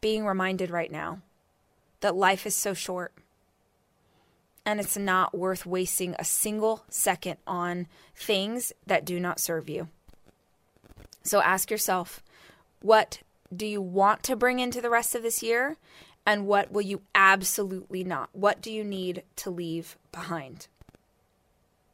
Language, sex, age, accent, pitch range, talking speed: English, female, 20-39, American, 185-230 Hz, 140 wpm